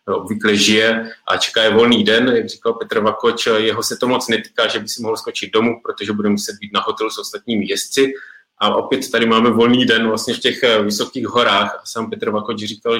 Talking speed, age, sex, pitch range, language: 215 wpm, 20-39, male, 100-110 Hz, Czech